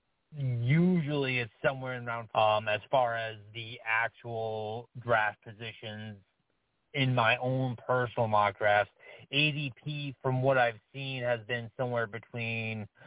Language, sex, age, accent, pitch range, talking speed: English, male, 30-49, American, 110-130 Hz, 130 wpm